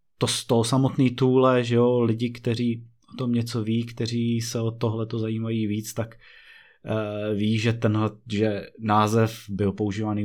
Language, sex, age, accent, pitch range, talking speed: Czech, male, 20-39, native, 100-120 Hz, 170 wpm